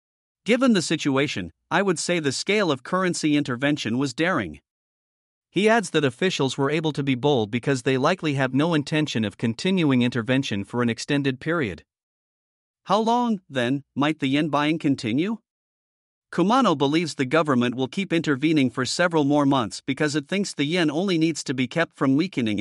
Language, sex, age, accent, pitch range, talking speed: English, male, 50-69, American, 130-170 Hz, 175 wpm